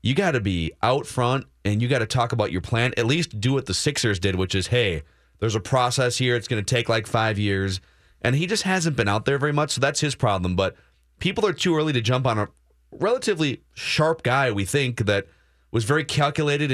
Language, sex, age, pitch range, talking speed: English, male, 30-49, 95-145 Hz, 235 wpm